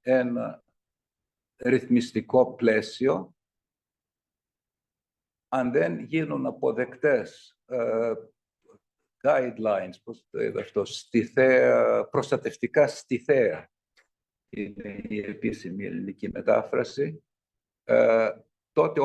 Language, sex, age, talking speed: Greek, male, 60-79, 75 wpm